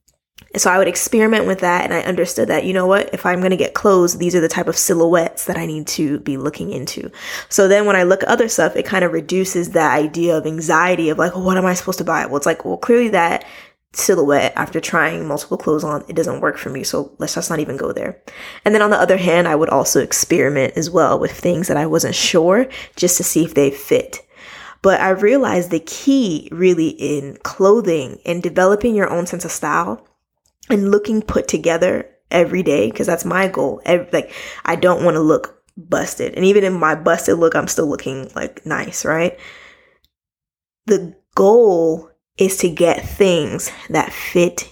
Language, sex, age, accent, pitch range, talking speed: English, female, 20-39, American, 165-195 Hz, 210 wpm